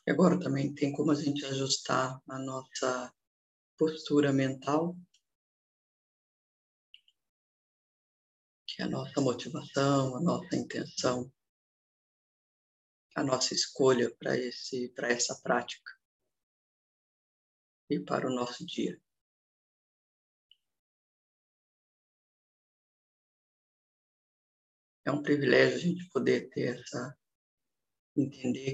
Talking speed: 85 wpm